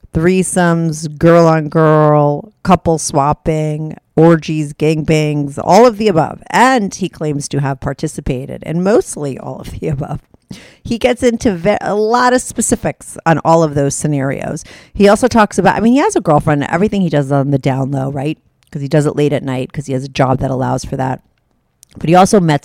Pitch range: 145-190 Hz